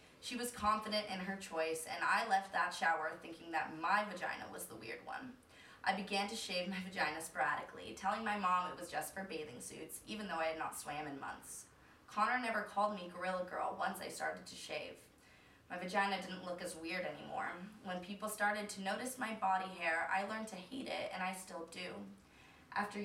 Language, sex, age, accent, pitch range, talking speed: English, female, 20-39, American, 165-210 Hz, 205 wpm